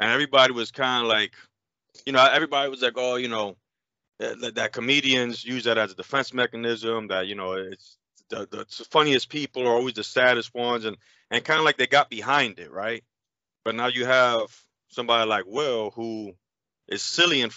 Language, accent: English, American